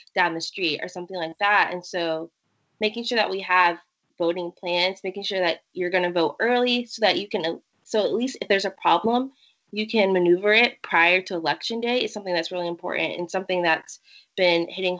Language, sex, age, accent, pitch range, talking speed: English, female, 20-39, American, 165-195 Hz, 210 wpm